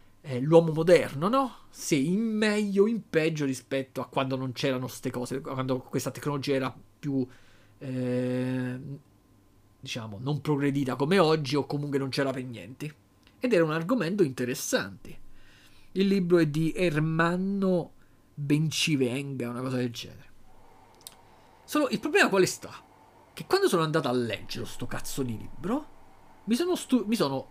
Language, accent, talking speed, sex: Italian, native, 150 wpm, male